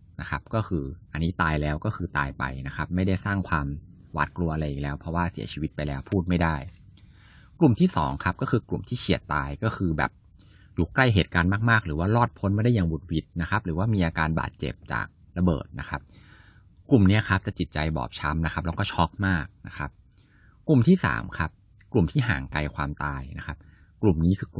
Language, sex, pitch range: Thai, male, 80-100 Hz